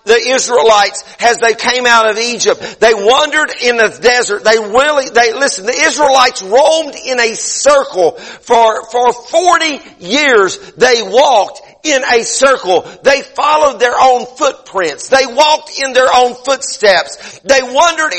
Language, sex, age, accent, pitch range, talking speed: English, male, 50-69, American, 225-280 Hz, 150 wpm